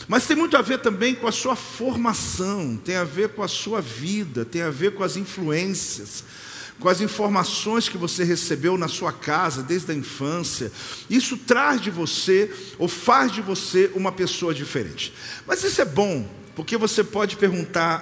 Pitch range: 155-220 Hz